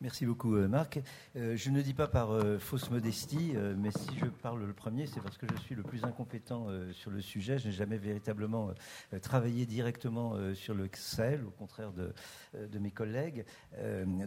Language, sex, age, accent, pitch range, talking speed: French, male, 50-69, French, 105-130 Hz, 200 wpm